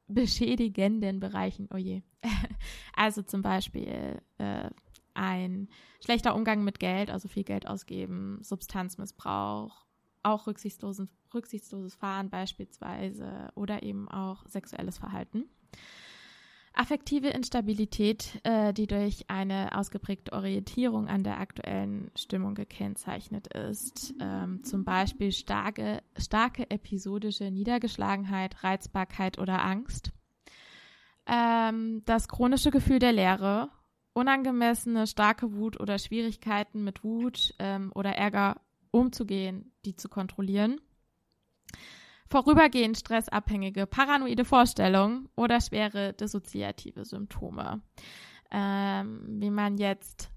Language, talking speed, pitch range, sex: German, 100 wpm, 195-225 Hz, female